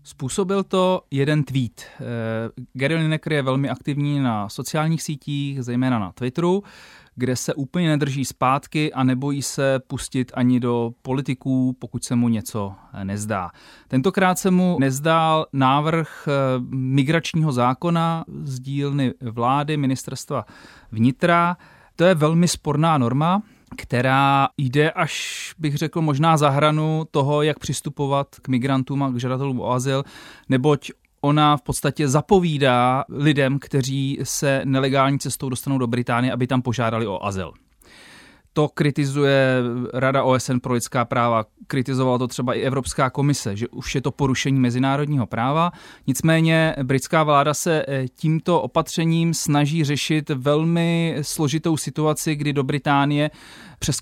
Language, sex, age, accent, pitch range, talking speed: Czech, male, 30-49, native, 130-155 Hz, 135 wpm